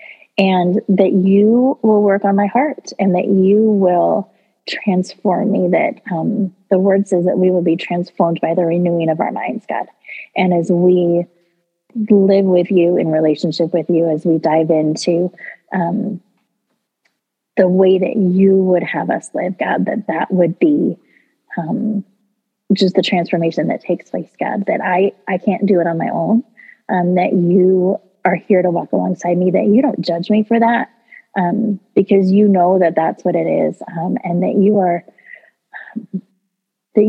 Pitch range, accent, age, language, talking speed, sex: 180-205 Hz, American, 30-49, English, 175 wpm, female